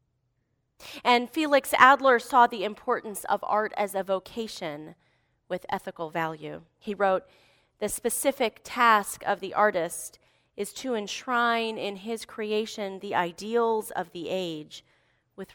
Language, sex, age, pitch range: English, female, 30-49, 165-225 Hz